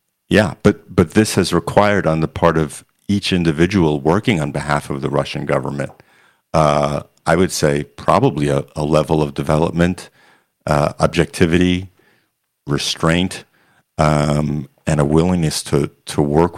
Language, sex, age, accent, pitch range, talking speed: English, male, 50-69, American, 75-85 Hz, 140 wpm